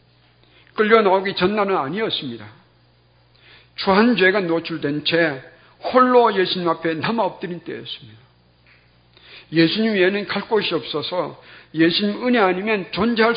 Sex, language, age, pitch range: male, Korean, 50-69, 145-210 Hz